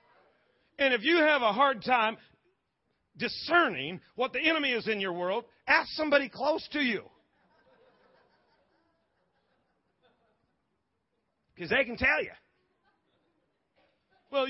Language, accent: English, American